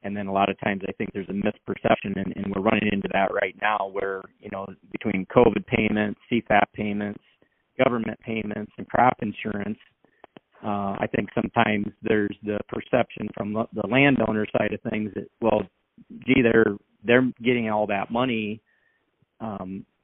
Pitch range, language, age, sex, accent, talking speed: 100-115 Hz, English, 40-59, male, American, 165 wpm